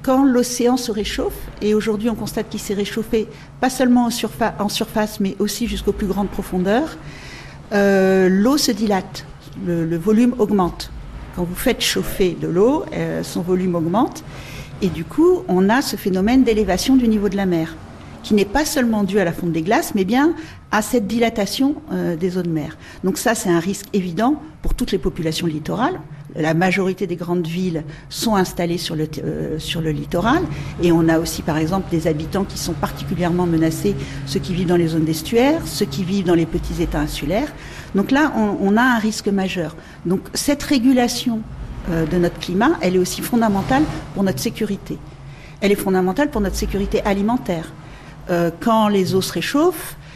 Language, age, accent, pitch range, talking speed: French, 50-69, French, 170-225 Hz, 190 wpm